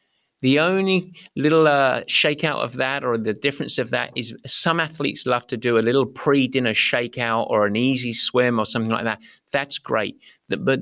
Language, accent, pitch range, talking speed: English, British, 120-155 Hz, 185 wpm